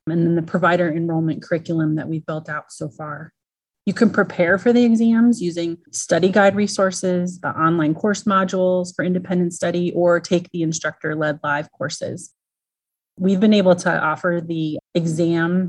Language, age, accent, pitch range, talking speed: English, 30-49, American, 155-185 Hz, 165 wpm